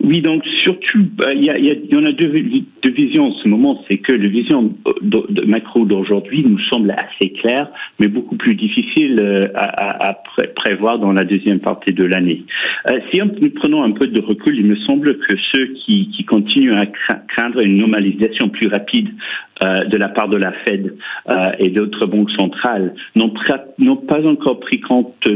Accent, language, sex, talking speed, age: French, French, male, 195 wpm, 50-69